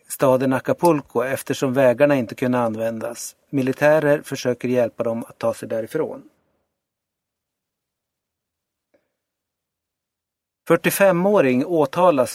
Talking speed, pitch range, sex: 85 wpm, 125-155 Hz, male